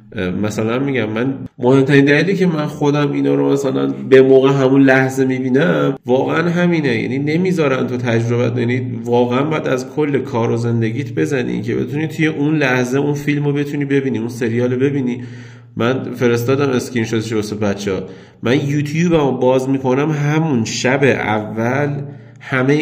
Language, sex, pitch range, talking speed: Persian, male, 110-135 Hz, 150 wpm